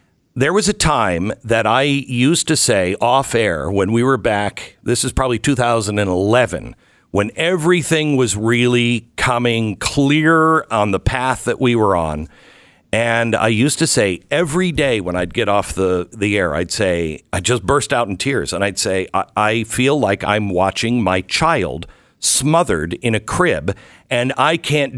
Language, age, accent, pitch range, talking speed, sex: English, 50-69, American, 110-155 Hz, 175 wpm, male